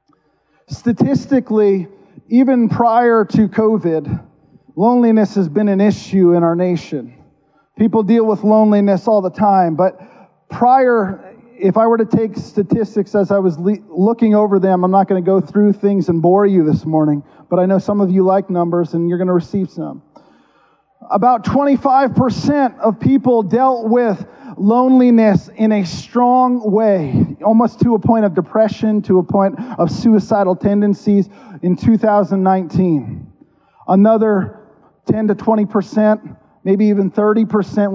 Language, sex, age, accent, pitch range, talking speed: English, male, 40-59, American, 180-220 Hz, 145 wpm